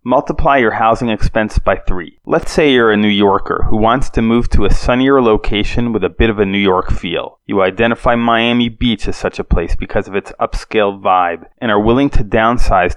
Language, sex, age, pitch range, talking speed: English, male, 30-49, 100-120 Hz, 215 wpm